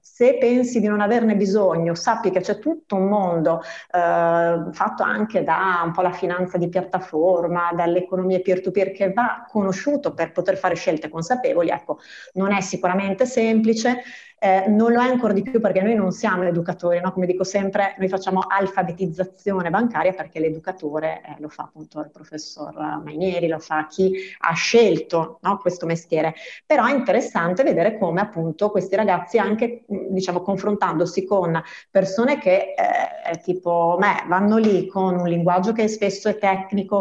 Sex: female